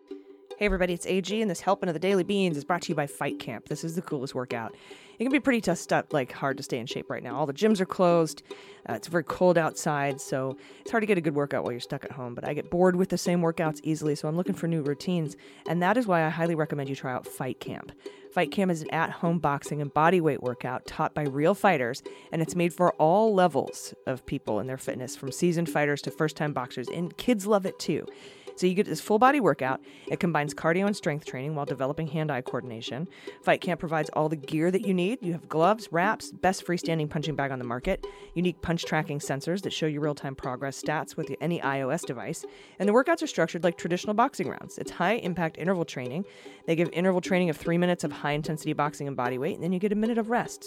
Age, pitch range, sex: 30-49, 145-185 Hz, female